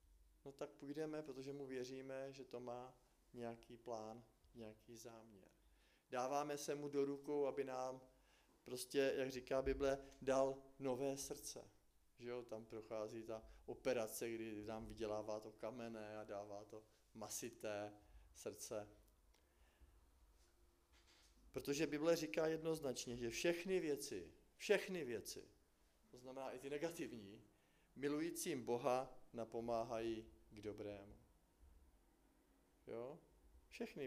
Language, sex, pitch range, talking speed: Czech, male, 105-140 Hz, 110 wpm